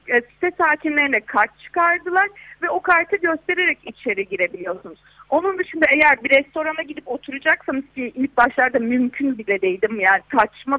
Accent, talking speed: native, 135 wpm